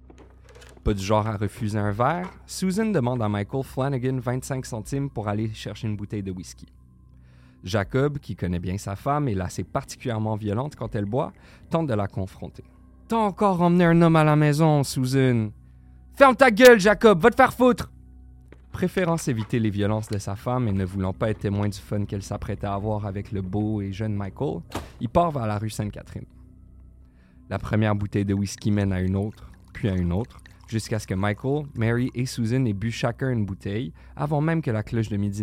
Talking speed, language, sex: 205 wpm, French, male